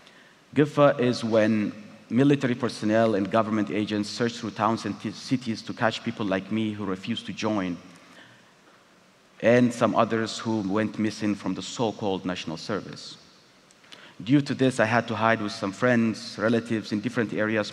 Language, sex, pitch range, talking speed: English, male, 100-120 Hz, 165 wpm